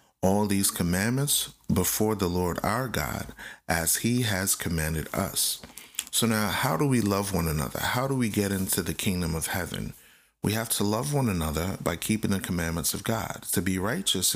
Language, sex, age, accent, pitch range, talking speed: English, male, 30-49, American, 85-105 Hz, 190 wpm